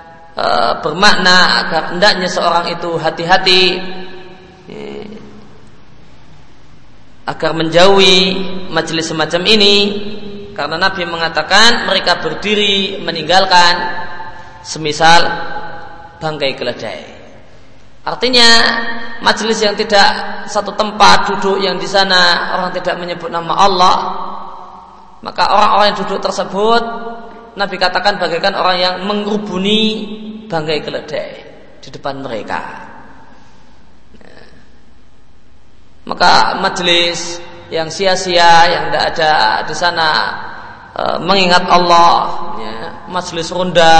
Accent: native